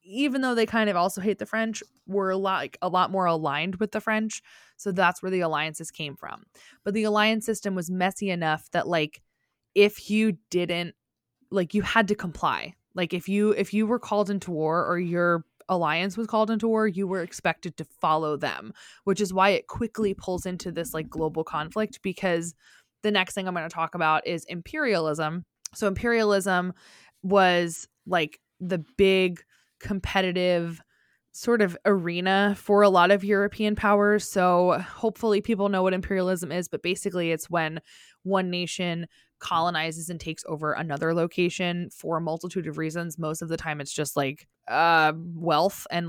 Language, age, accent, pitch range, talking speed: English, 20-39, American, 165-200 Hz, 175 wpm